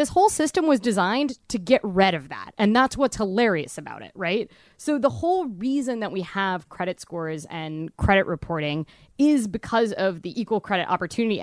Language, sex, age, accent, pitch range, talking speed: English, female, 20-39, American, 165-220 Hz, 190 wpm